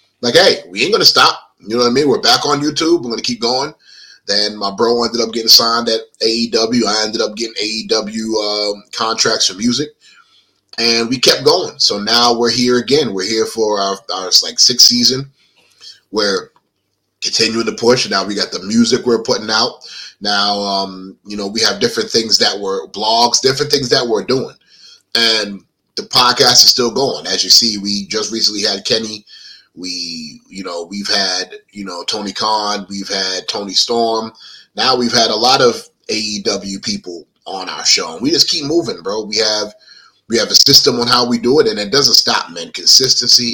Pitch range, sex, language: 105-140 Hz, male, English